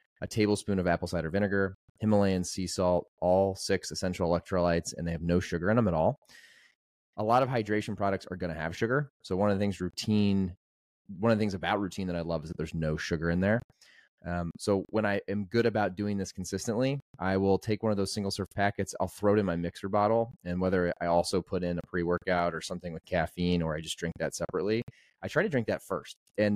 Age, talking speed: 30-49, 240 wpm